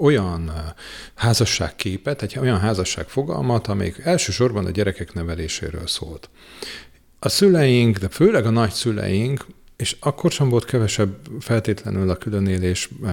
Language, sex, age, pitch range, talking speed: Hungarian, male, 40-59, 95-120 Hz, 125 wpm